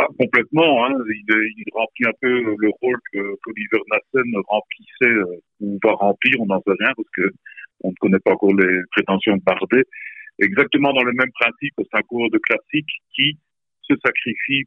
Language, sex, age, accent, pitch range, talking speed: French, male, 50-69, French, 100-135 Hz, 185 wpm